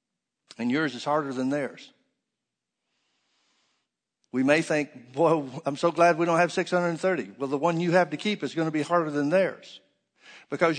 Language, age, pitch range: English, 60-79, 145-185 Hz